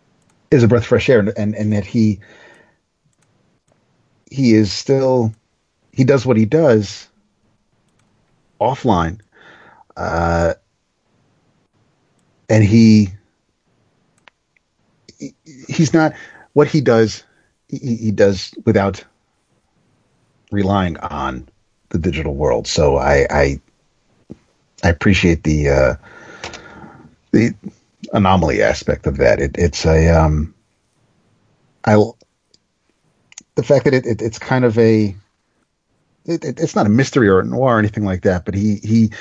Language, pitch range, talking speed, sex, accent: English, 85-120 Hz, 120 wpm, male, American